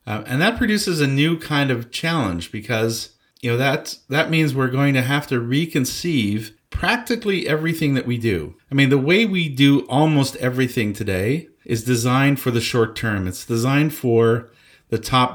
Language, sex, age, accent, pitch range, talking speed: English, male, 50-69, American, 115-145 Hz, 180 wpm